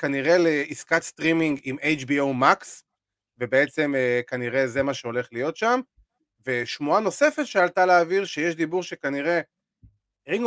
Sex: male